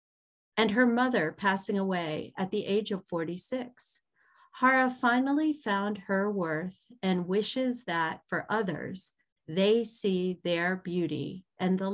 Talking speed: 130 wpm